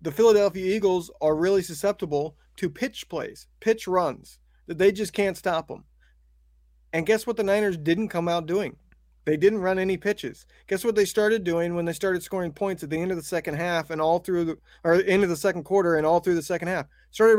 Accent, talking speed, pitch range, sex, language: American, 225 wpm, 150-195 Hz, male, English